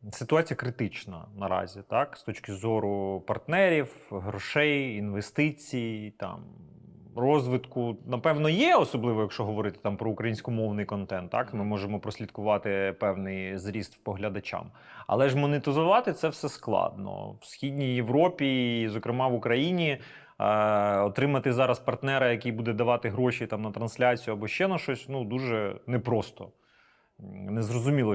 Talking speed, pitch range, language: 130 wpm, 105-135 Hz, Ukrainian